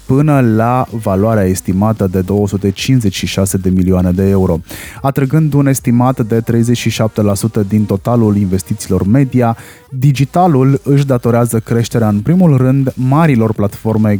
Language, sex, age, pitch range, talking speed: Romanian, male, 20-39, 100-125 Hz, 120 wpm